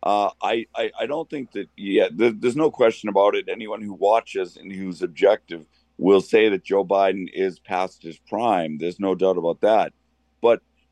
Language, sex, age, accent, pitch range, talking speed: English, male, 50-69, American, 95-125 Hz, 190 wpm